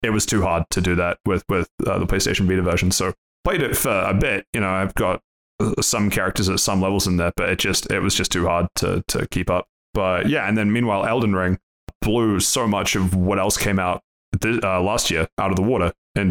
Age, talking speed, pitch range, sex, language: 20-39, 245 wpm, 90-100 Hz, male, English